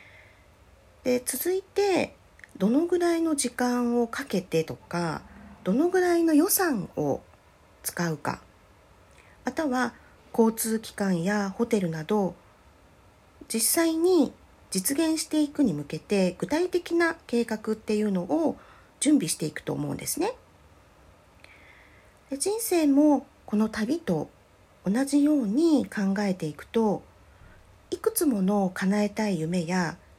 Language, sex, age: Japanese, female, 40-59